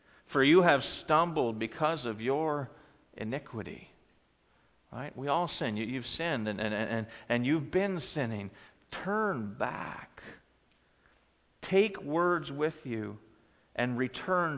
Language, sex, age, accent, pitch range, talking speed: English, male, 50-69, American, 105-145 Hz, 105 wpm